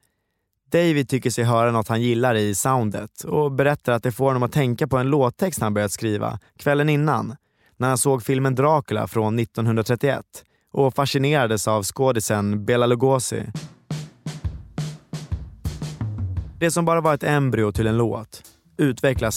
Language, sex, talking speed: Swedish, male, 150 wpm